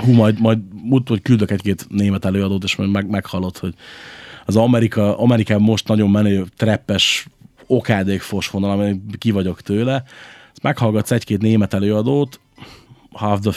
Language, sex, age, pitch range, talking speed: Hungarian, male, 30-49, 100-125 Hz, 150 wpm